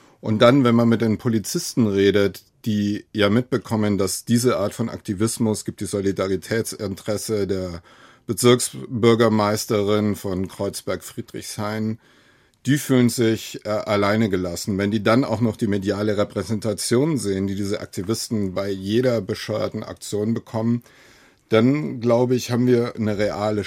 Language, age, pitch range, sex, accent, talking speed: German, 50-69, 105-120 Hz, male, German, 135 wpm